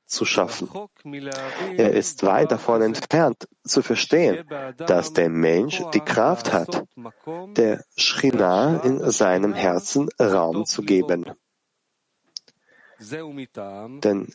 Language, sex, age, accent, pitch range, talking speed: German, male, 40-59, German, 105-140 Hz, 100 wpm